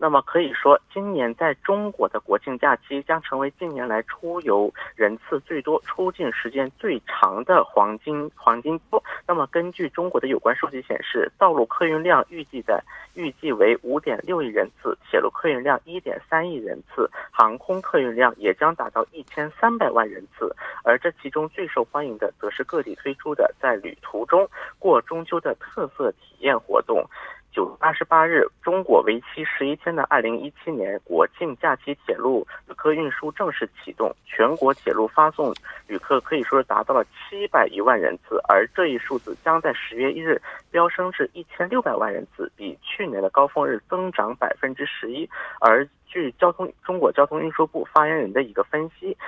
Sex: male